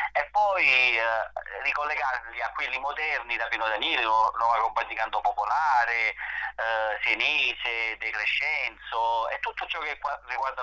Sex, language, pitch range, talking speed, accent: male, Italian, 110-125 Hz, 140 wpm, native